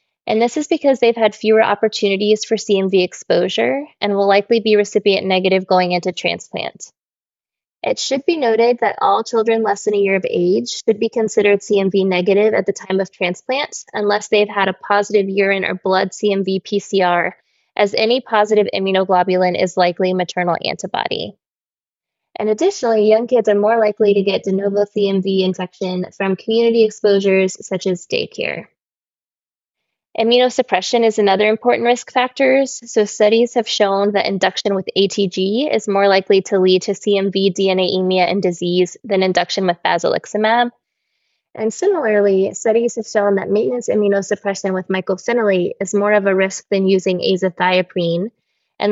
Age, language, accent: 20-39, English, American